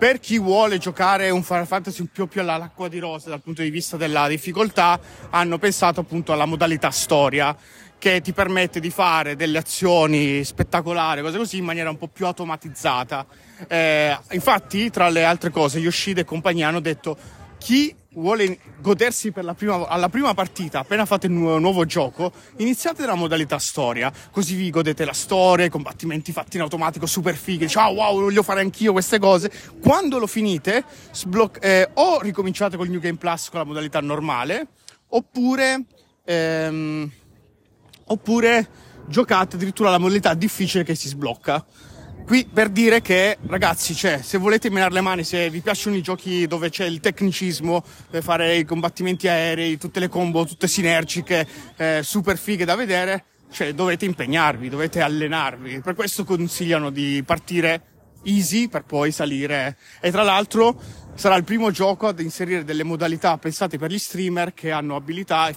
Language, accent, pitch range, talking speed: Italian, native, 160-195 Hz, 170 wpm